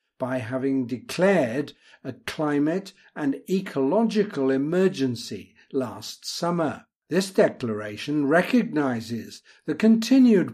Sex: male